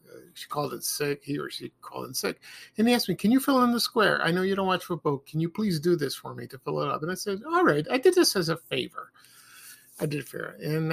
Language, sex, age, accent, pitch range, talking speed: English, male, 50-69, American, 145-190 Hz, 290 wpm